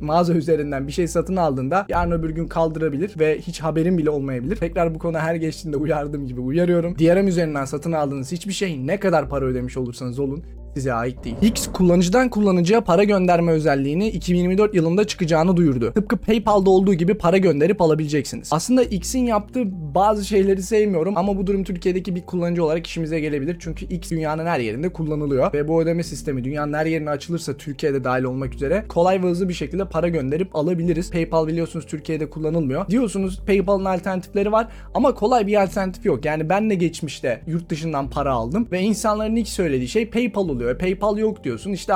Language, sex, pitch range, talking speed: Turkish, male, 155-195 Hz, 180 wpm